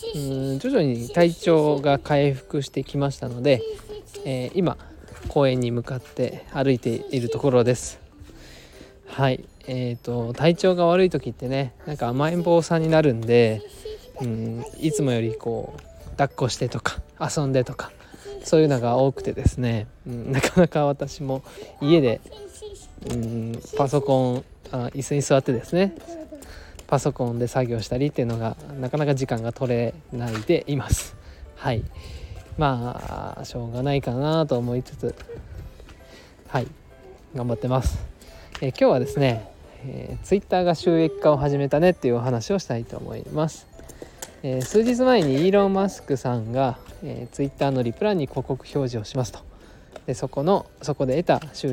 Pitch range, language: 120-150 Hz, Japanese